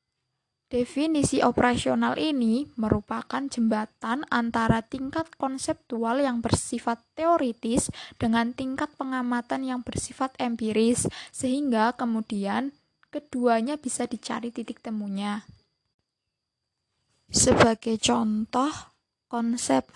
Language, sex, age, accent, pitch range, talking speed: Indonesian, female, 10-29, native, 230-270 Hz, 80 wpm